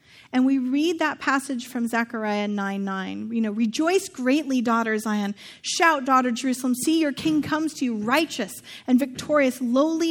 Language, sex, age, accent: English, female, 30-49, American